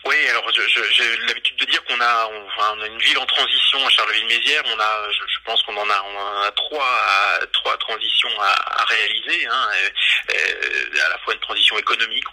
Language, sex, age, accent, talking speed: French, male, 30-49, French, 225 wpm